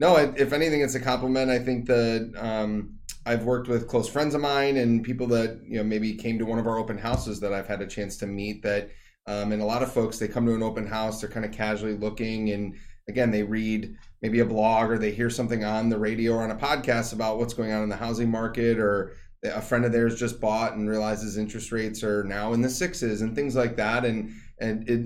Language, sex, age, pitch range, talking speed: English, male, 30-49, 100-120 Hz, 250 wpm